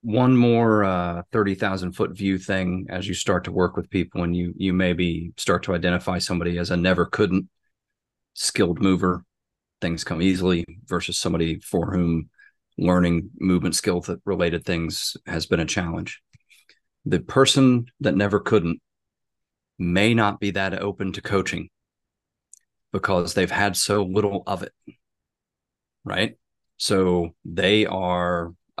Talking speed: 140 wpm